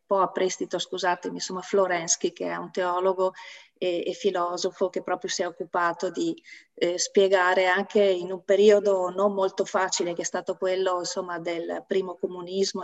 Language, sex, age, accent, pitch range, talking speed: Italian, female, 30-49, native, 185-220 Hz, 170 wpm